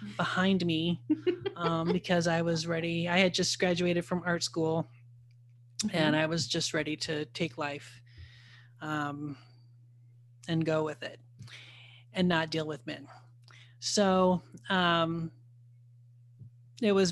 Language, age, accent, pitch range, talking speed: English, 30-49, American, 125-210 Hz, 125 wpm